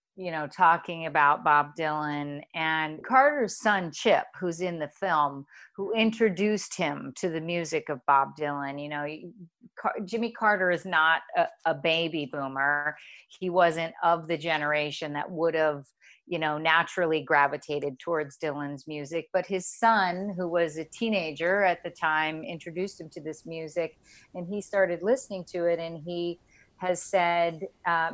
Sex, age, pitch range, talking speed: female, 40-59, 155-190 Hz, 160 wpm